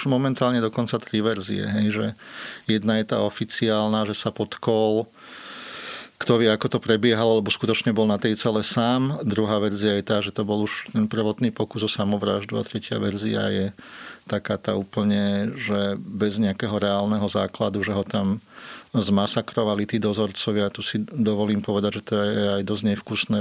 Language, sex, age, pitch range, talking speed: Slovak, male, 30-49, 105-115 Hz, 170 wpm